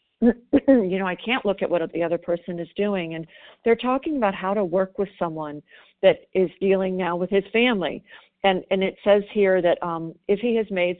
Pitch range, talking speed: 175-220 Hz, 215 wpm